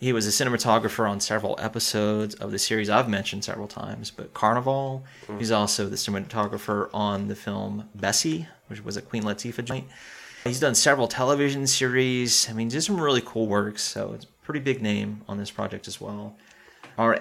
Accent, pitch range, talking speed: American, 105-130 Hz, 190 wpm